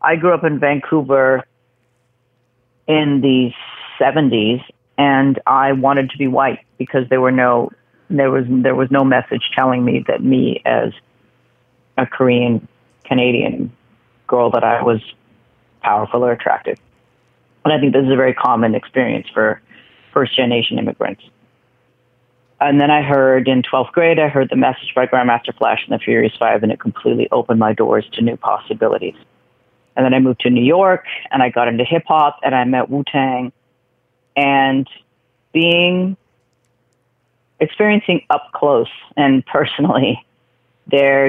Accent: American